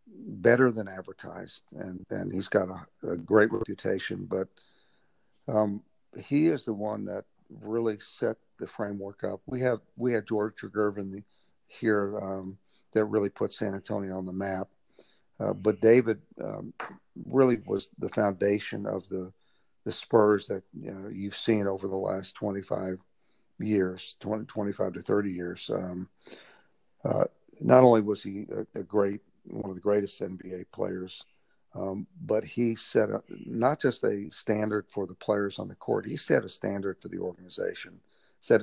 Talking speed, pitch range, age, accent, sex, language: 165 wpm, 95-110 Hz, 50-69, American, male, English